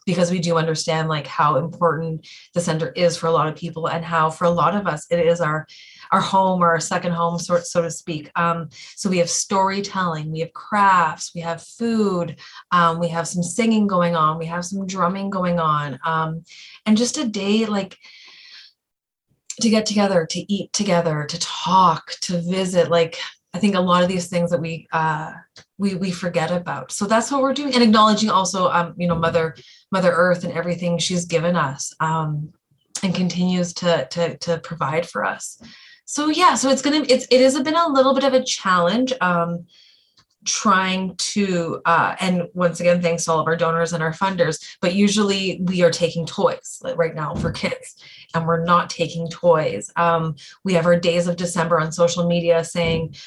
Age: 20-39